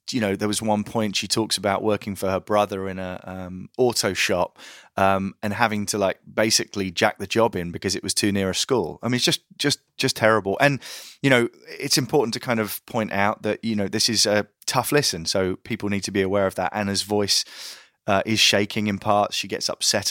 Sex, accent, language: male, British, English